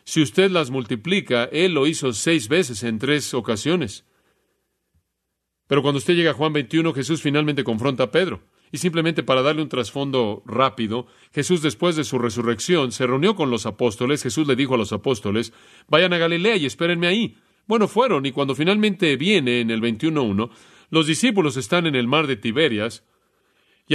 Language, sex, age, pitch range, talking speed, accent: Spanish, male, 40-59, 125-165 Hz, 180 wpm, Mexican